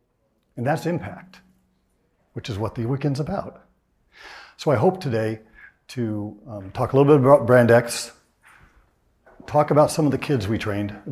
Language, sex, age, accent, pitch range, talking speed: English, male, 50-69, American, 110-135 Hz, 165 wpm